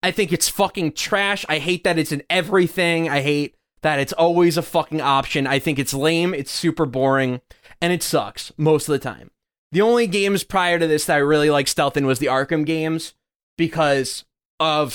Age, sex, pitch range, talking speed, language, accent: 20-39, male, 150-215 Hz, 205 wpm, English, American